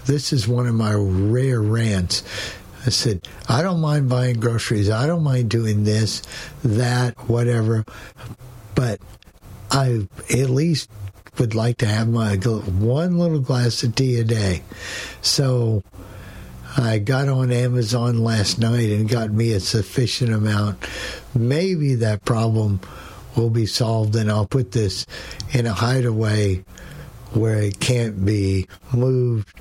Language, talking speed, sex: English, 135 wpm, male